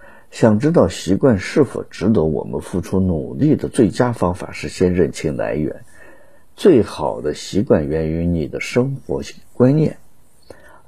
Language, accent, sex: Chinese, native, male